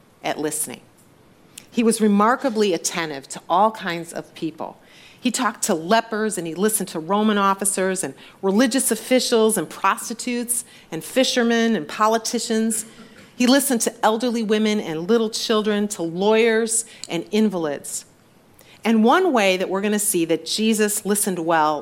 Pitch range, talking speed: 170-225 Hz, 150 wpm